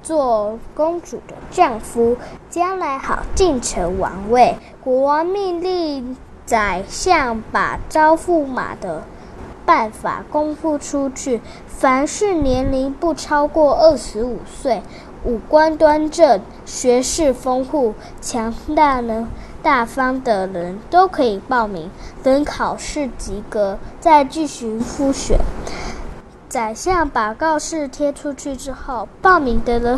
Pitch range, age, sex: 240-320 Hz, 10-29, female